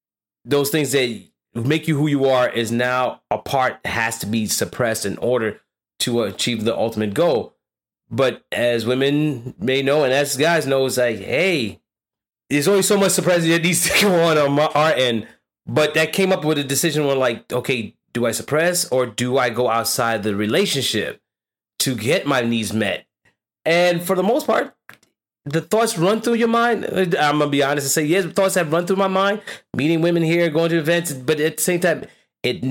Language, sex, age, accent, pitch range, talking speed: English, male, 30-49, American, 120-160 Hz, 205 wpm